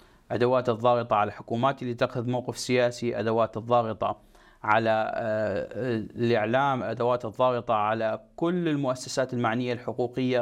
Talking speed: 110 wpm